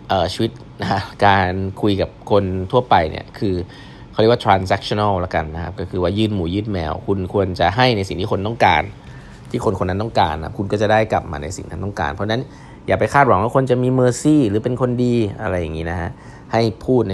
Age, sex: 20-39, male